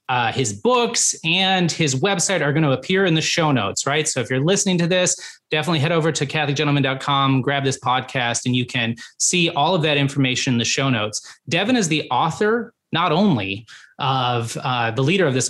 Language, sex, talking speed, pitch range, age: English, male, 205 wpm, 130-175 Hz, 20-39